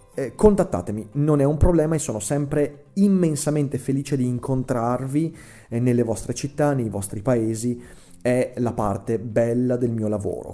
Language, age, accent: Italian, 30-49, native